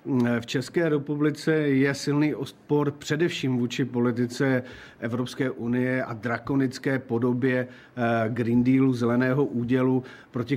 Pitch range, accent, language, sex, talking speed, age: 120-140 Hz, native, Czech, male, 110 wpm, 50-69